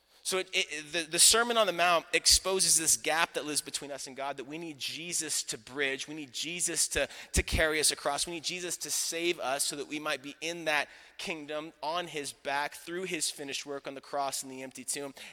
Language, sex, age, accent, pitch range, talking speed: English, male, 30-49, American, 135-170 Hz, 225 wpm